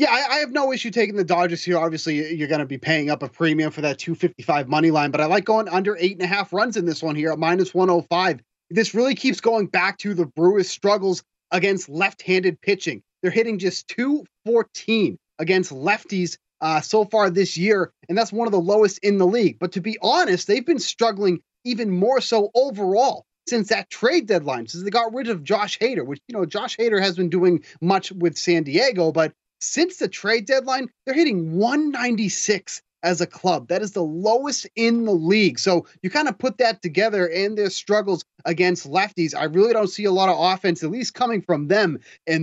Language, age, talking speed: English, 30-49, 215 wpm